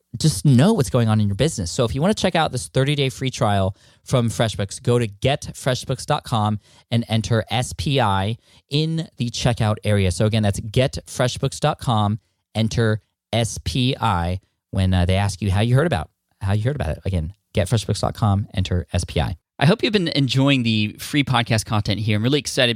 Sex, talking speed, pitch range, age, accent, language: male, 180 wpm, 105-125 Hz, 10-29, American, English